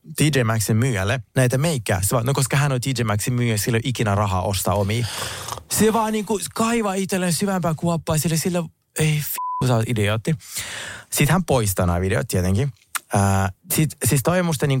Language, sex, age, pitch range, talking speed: Finnish, male, 20-39, 105-155 Hz, 165 wpm